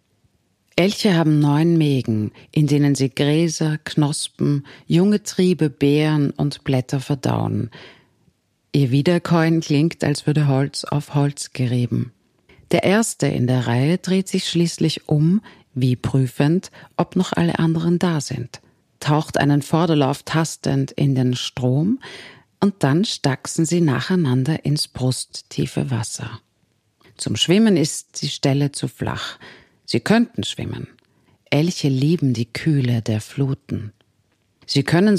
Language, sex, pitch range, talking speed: German, female, 130-165 Hz, 125 wpm